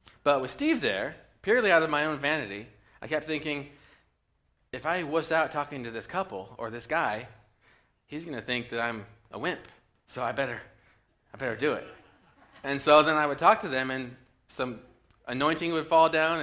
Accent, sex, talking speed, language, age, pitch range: American, male, 195 wpm, English, 30-49, 115-145 Hz